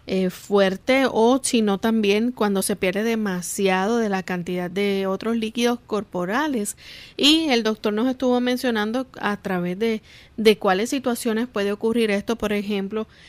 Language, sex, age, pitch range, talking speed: Spanish, female, 30-49, 190-225 Hz, 150 wpm